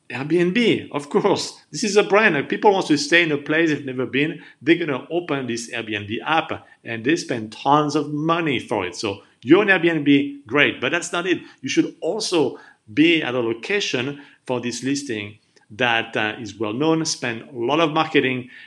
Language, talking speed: English, 195 wpm